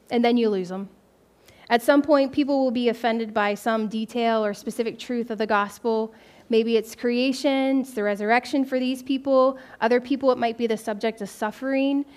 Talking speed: 190 wpm